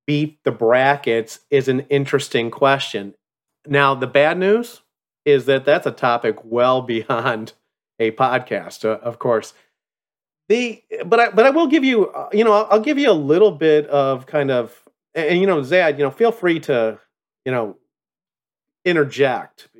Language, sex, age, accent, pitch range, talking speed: English, male, 40-59, American, 120-160 Hz, 175 wpm